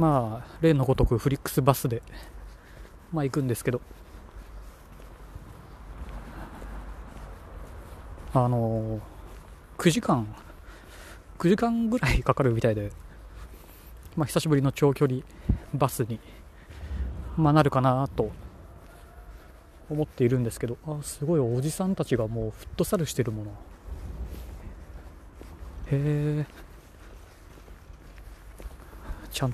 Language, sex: Japanese, male